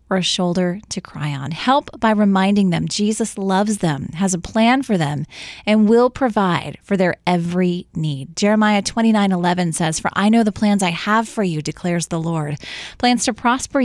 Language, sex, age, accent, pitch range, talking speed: English, female, 20-39, American, 175-220 Hz, 190 wpm